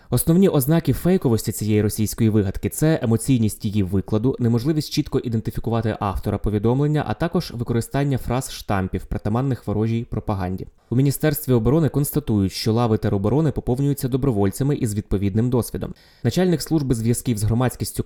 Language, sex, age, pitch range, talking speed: Ukrainian, male, 20-39, 105-130 Hz, 135 wpm